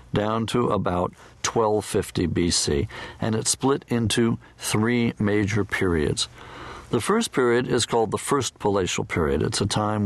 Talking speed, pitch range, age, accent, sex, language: 145 wpm, 100-120 Hz, 50-69, American, male, English